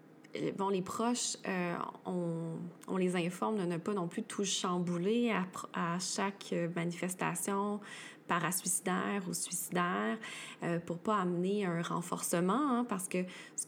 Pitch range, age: 175-215 Hz, 20-39